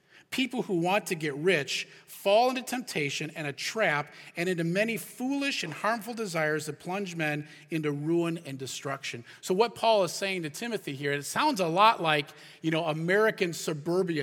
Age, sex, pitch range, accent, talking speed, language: 40-59, male, 150-200 Hz, American, 175 wpm, English